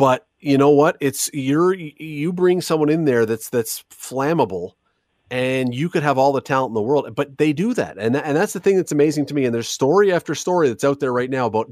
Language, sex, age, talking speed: English, male, 30-49, 245 wpm